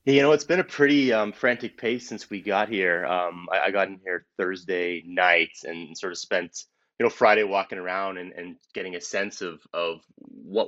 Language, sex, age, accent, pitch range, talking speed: English, male, 30-49, American, 90-145 Hz, 215 wpm